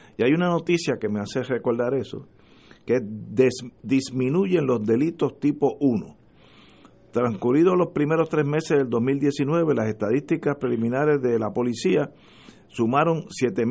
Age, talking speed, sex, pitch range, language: 50-69, 130 wpm, male, 110-145 Hz, Spanish